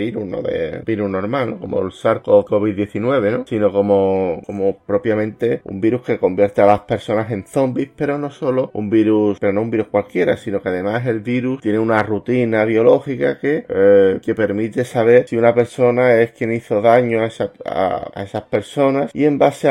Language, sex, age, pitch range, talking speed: Spanish, male, 30-49, 100-120 Hz, 200 wpm